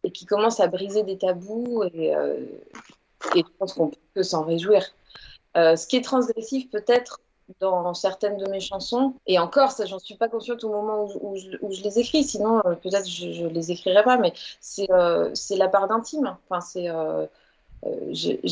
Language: French